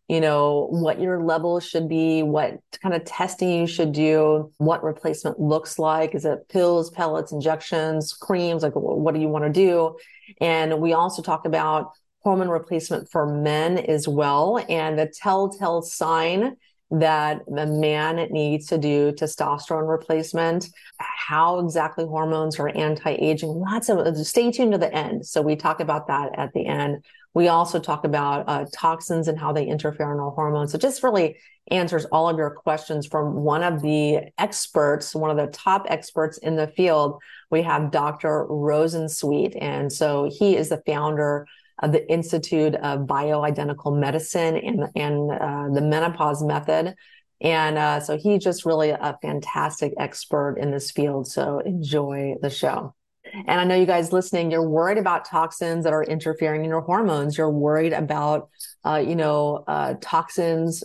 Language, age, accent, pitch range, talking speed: English, 30-49, American, 150-170 Hz, 170 wpm